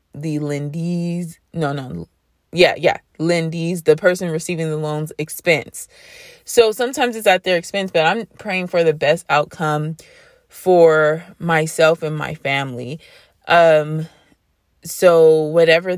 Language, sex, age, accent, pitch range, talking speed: English, female, 20-39, American, 150-185 Hz, 130 wpm